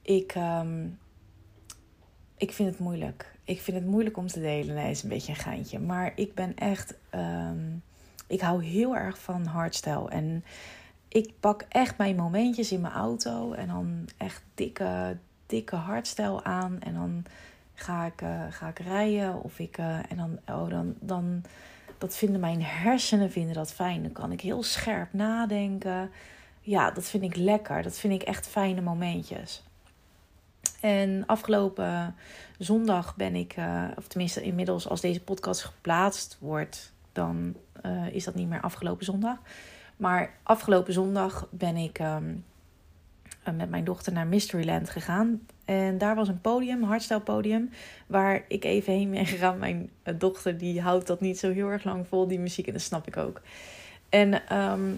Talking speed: 165 wpm